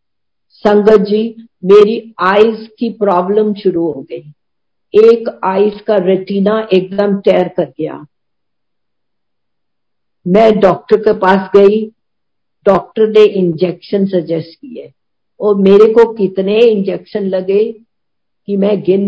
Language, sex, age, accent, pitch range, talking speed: Hindi, female, 50-69, native, 180-215 Hz, 115 wpm